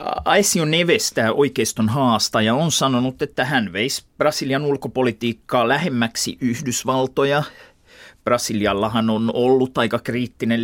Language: Finnish